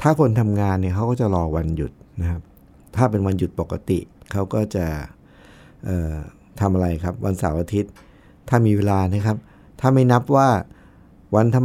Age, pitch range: 60-79, 100-140 Hz